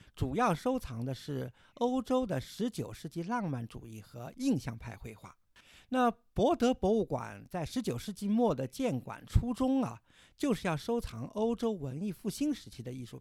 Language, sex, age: Chinese, male, 50-69